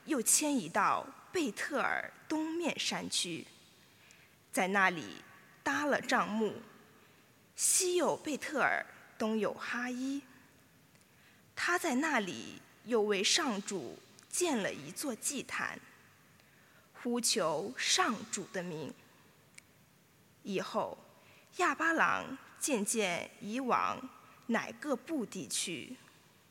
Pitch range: 210-295 Hz